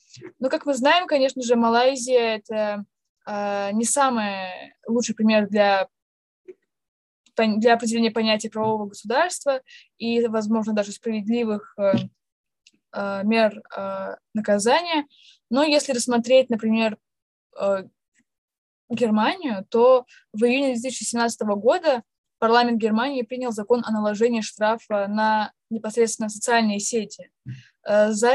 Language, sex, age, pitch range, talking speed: Russian, female, 20-39, 210-245 Hz, 105 wpm